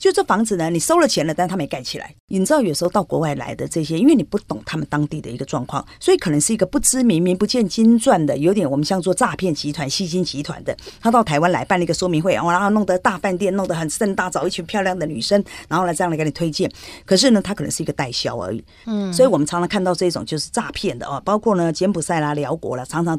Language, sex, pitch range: Chinese, female, 155-215 Hz